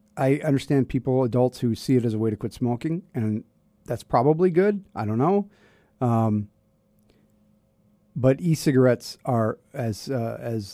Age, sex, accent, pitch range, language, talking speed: 40-59, male, American, 110-140 Hz, English, 150 wpm